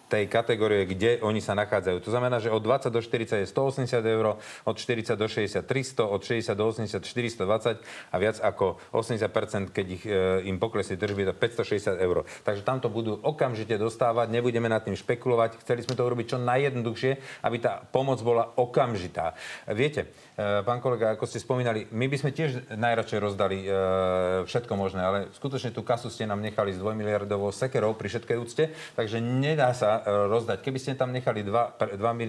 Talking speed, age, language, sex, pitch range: 180 wpm, 40-59, Slovak, male, 100-120 Hz